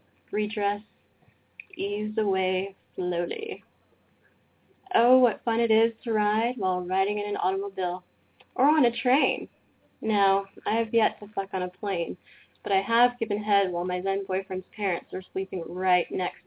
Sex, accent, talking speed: female, American, 155 wpm